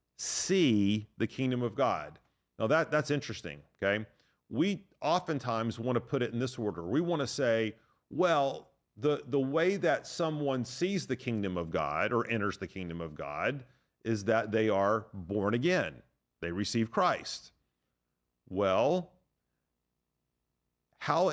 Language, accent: English, American